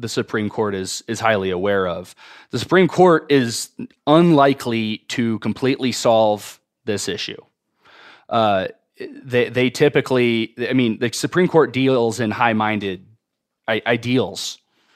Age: 20-39